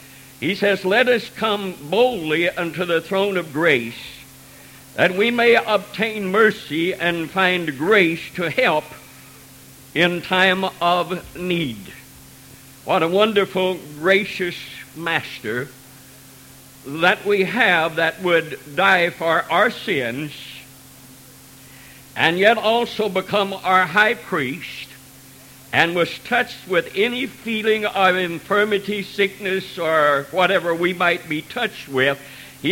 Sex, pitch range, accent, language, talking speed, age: male, 160-215 Hz, American, English, 115 wpm, 60-79